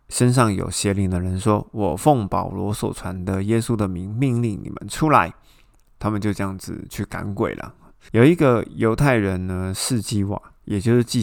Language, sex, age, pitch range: Chinese, male, 20-39, 95-115 Hz